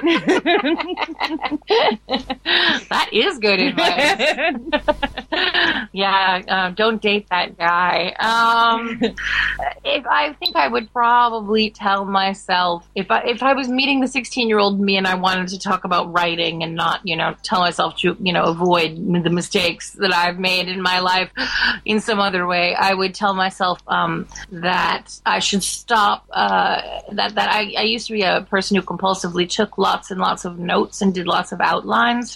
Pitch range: 180-230 Hz